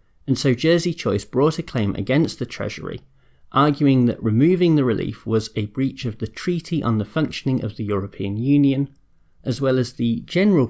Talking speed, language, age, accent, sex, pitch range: 185 wpm, English, 30-49, British, male, 110-145 Hz